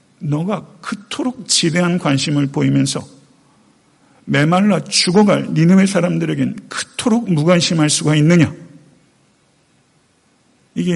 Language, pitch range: Korean, 160-240 Hz